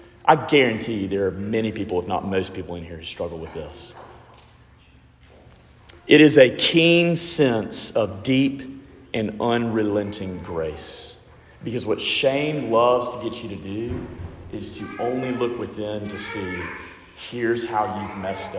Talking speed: 150 wpm